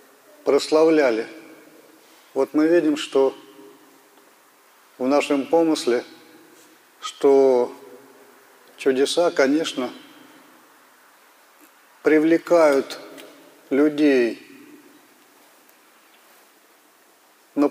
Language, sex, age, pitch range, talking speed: Russian, male, 40-59, 135-160 Hz, 45 wpm